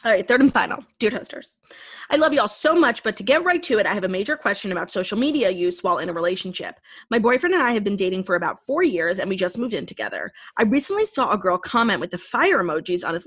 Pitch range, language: 190-280 Hz, English